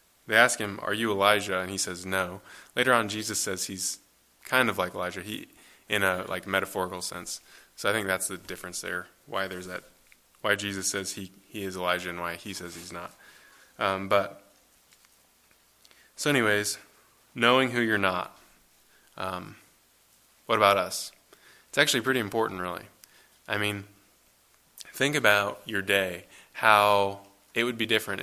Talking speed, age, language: 160 wpm, 20-39, English